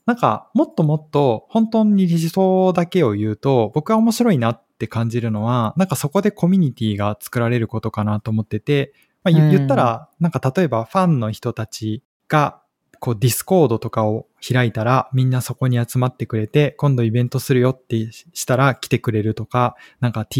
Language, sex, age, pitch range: Japanese, male, 20-39, 115-150 Hz